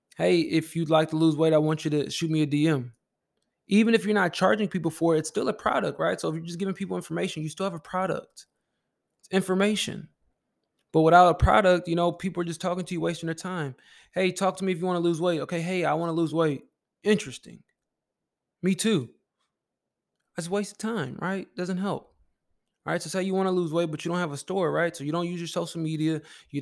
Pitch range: 150-175 Hz